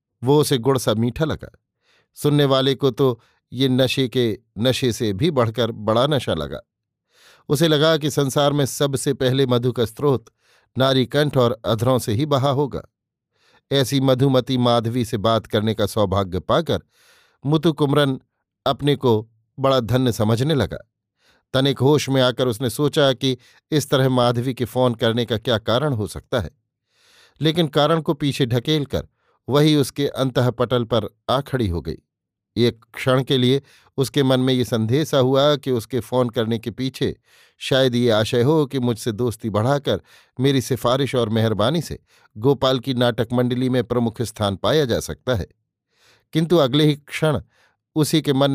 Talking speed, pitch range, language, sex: 165 wpm, 120-140 Hz, Hindi, male